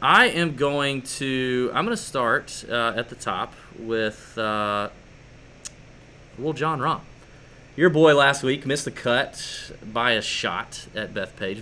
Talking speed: 150 wpm